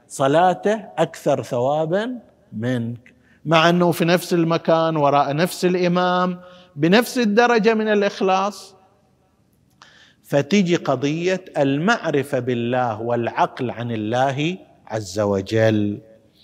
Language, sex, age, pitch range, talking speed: Arabic, male, 50-69, 120-175 Hz, 90 wpm